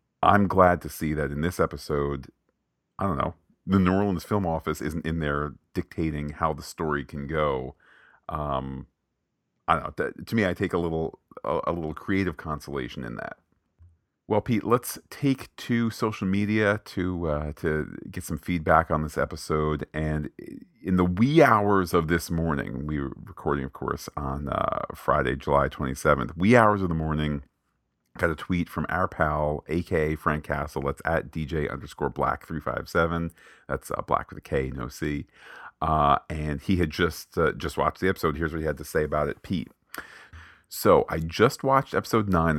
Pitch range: 75-90 Hz